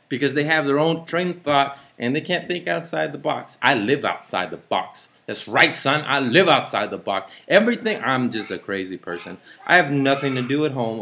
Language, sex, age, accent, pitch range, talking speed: English, male, 30-49, American, 110-155 Hz, 225 wpm